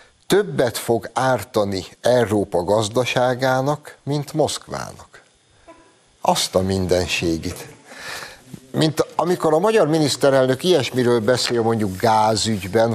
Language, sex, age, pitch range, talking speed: Hungarian, male, 60-79, 95-130 Hz, 90 wpm